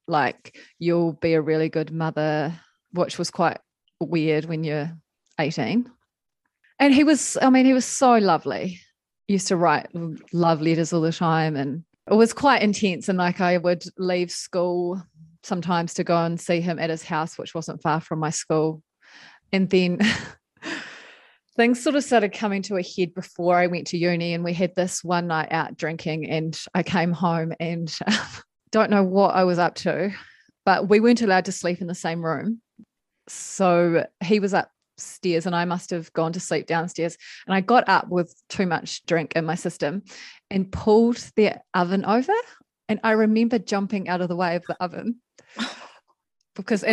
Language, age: English, 30-49